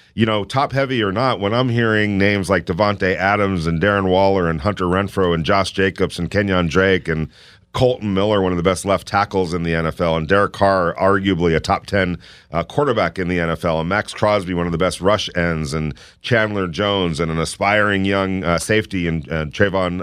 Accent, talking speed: American, 205 wpm